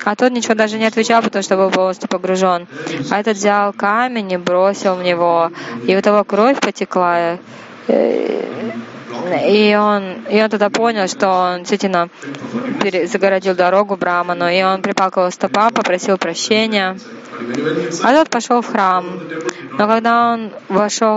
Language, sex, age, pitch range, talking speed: Russian, female, 20-39, 185-225 Hz, 145 wpm